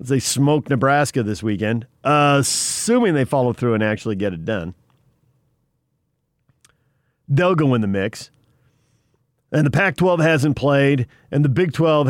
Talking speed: 140 wpm